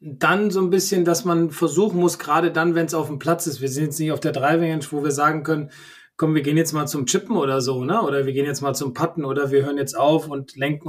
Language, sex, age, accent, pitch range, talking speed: German, male, 20-39, German, 145-175 Hz, 285 wpm